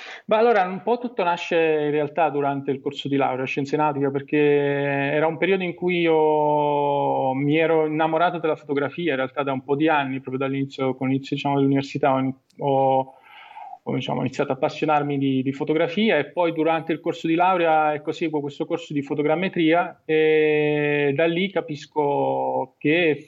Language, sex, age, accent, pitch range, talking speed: Italian, male, 20-39, native, 140-160 Hz, 175 wpm